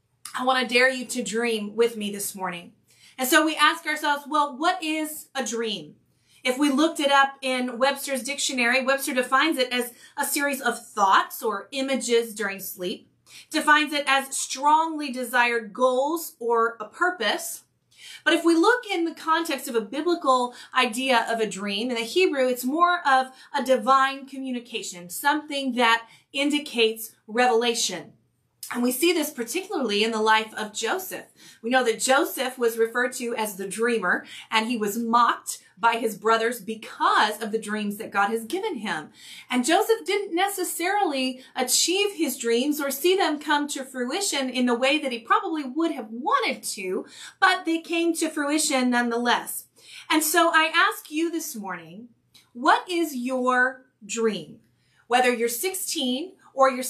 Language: English